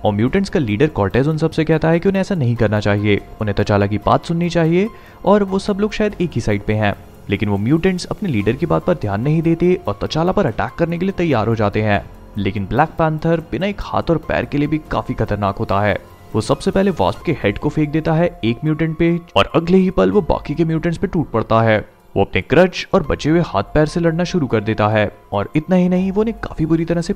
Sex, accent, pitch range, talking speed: male, native, 105-175 Hz, 230 wpm